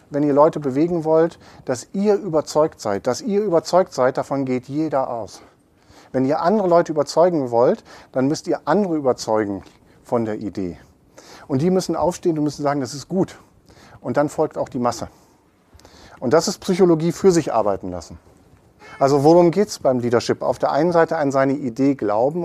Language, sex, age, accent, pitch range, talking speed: German, male, 40-59, German, 130-165 Hz, 185 wpm